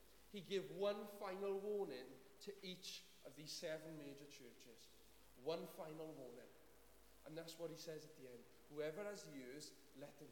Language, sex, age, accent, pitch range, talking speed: English, male, 40-59, British, 160-205 Hz, 165 wpm